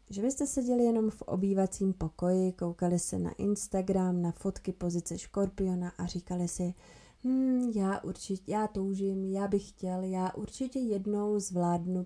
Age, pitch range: 20-39, 170-205 Hz